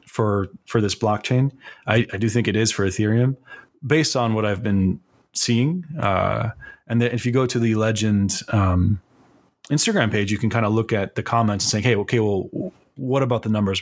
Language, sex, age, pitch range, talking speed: English, male, 30-49, 100-120 Hz, 205 wpm